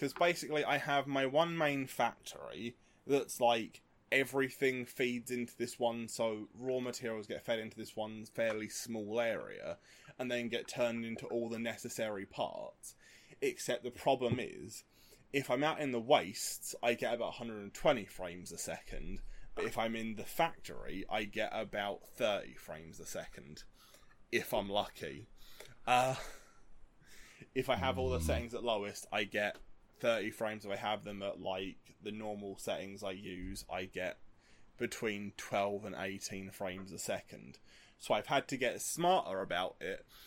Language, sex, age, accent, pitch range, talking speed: English, male, 20-39, British, 105-135 Hz, 160 wpm